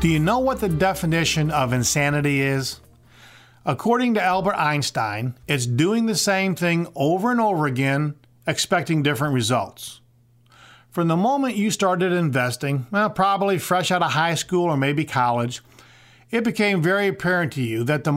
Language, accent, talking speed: English, American, 160 wpm